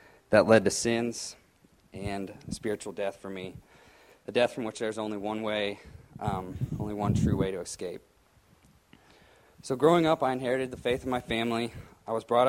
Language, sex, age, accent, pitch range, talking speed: English, male, 20-39, American, 105-125 Hz, 180 wpm